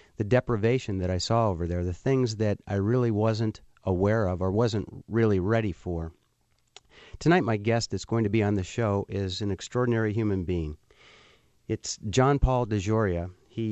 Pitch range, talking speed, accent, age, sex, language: 95-115 Hz, 175 wpm, American, 50-69, male, English